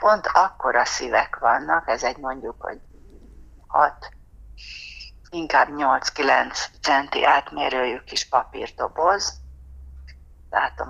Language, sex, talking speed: Hungarian, female, 90 wpm